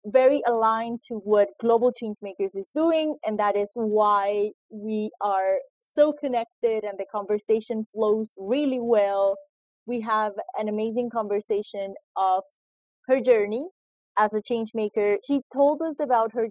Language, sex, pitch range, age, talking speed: English, female, 210-255 Hz, 20-39, 140 wpm